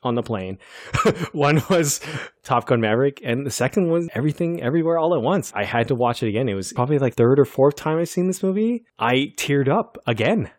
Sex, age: male, 20-39